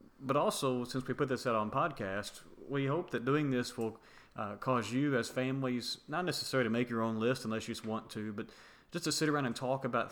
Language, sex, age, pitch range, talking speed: English, male, 30-49, 105-130 Hz, 235 wpm